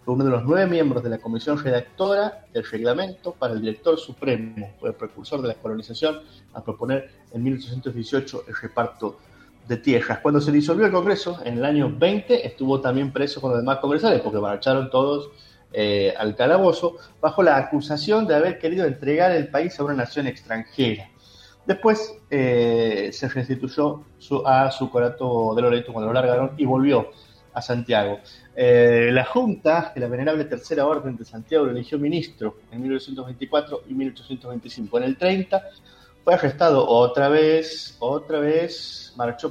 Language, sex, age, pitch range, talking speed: Spanish, male, 30-49, 120-155 Hz, 160 wpm